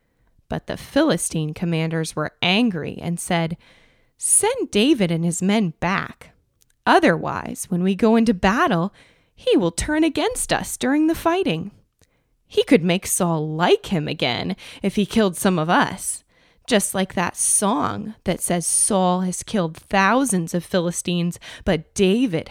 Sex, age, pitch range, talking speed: female, 20-39, 170-245 Hz, 145 wpm